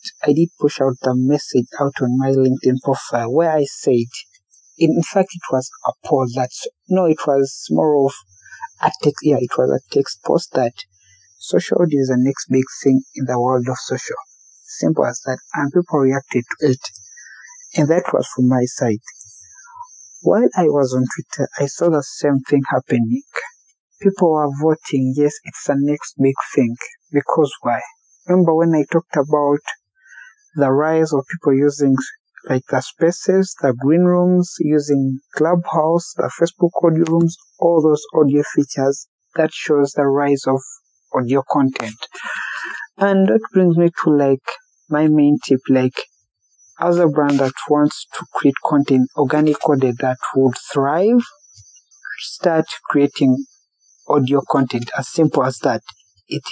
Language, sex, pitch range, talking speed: English, male, 130-165 Hz, 155 wpm